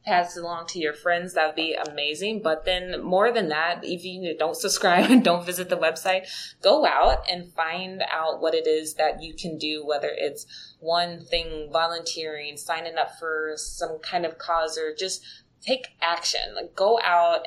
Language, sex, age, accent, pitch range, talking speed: English, female, 20-39, American, 150-190 Hz, 185 wpm